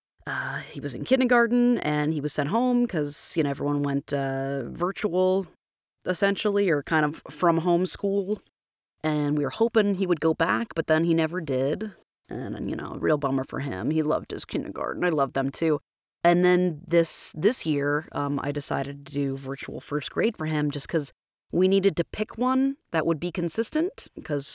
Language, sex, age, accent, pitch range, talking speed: English, female, 30-49, American, 150-205 Hz, 195 wpm